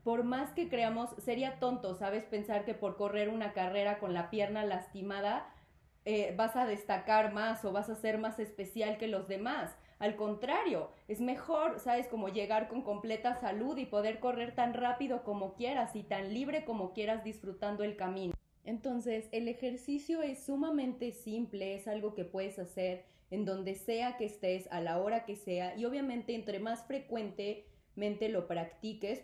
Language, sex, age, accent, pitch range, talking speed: Spanish, female, 20-39, Mexican, 190-230 Hz, 175 wpm